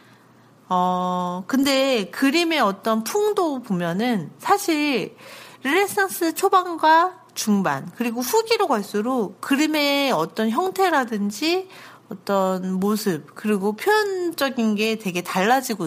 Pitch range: 185-295 Hz